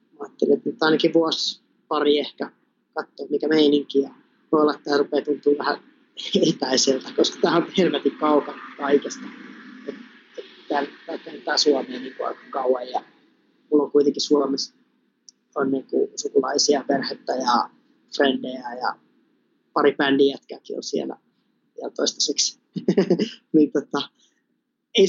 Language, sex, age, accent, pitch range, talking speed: Finnish, male, 30-49, native, 140-195 Hz, 120 wpm